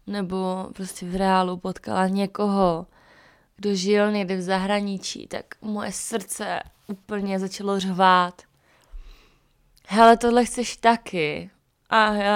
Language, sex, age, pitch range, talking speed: Czech, female, 20-39, 185-220 Hz, 110 wpm